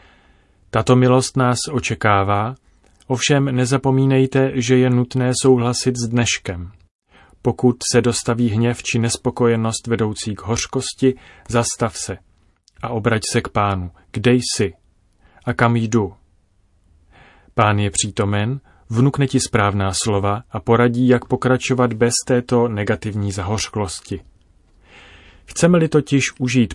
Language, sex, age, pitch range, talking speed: Czech, male, 30-49, 100-125 Hz, 115 wpm